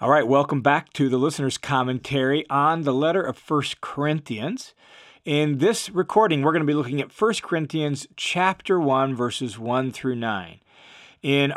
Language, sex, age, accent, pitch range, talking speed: English, male, 40-59, American, 130-165 Hz, 165 wpm